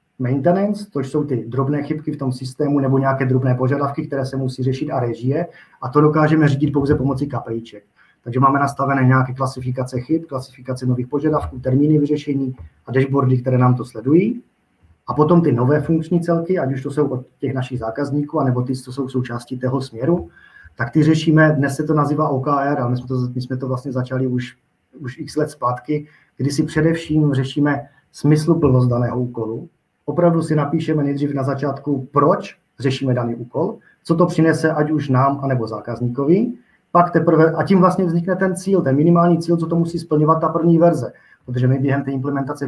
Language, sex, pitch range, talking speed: Czech, male, 130-155 Hz, 190 wpm